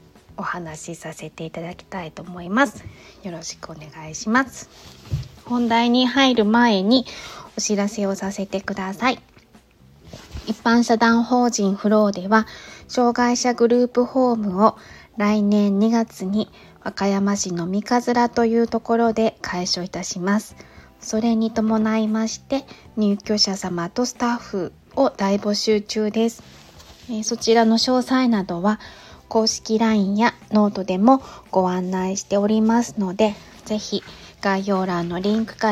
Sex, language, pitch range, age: female, Japanese, 190-230 Hz, 20-39